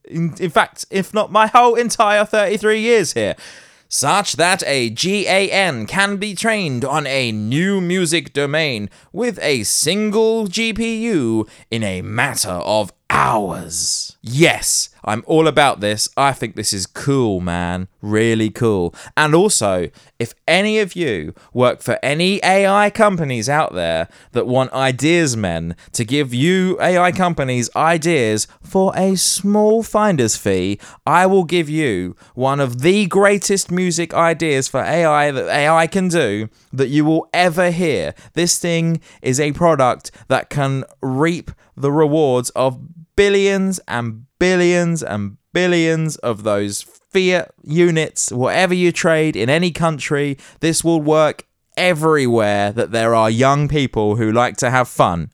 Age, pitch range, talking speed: 20-39, 115-175 Hz, 145 wpm